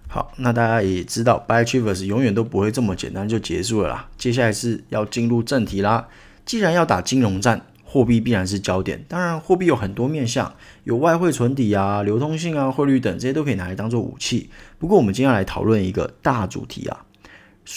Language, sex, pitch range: Chinese, male, 100-130 Hz